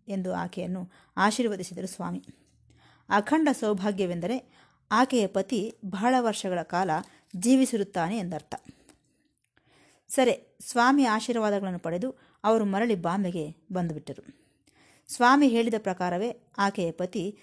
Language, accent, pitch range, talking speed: Kannada, native, 180-235 Hz, 85 wpm